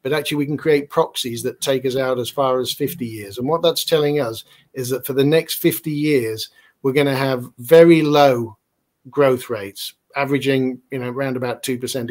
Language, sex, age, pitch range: Thai, male, 50-69, 125-140 Hz